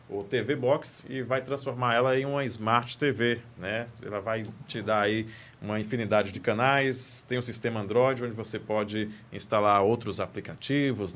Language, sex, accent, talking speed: Portuguese, male, Brazilian, 170 wpm